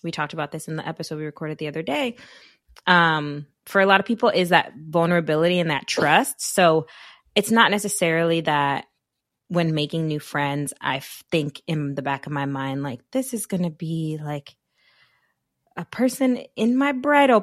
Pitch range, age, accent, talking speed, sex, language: 155-205 Hz, 20-39, American, 185 wpm, female, English